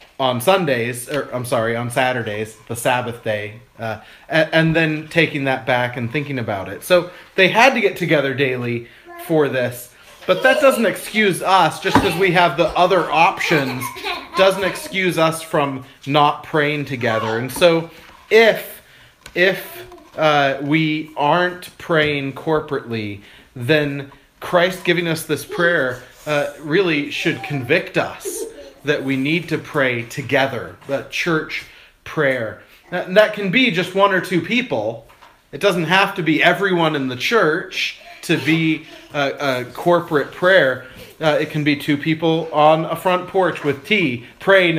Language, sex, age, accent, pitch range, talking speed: English, male, 30-49, American, 130-170 Hz, 155 wpm